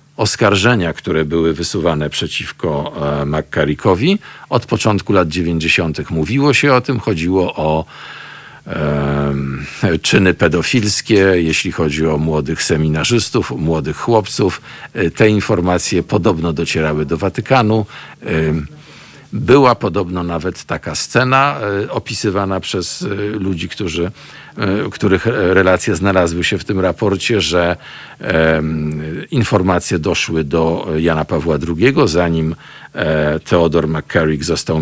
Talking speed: 100 wpm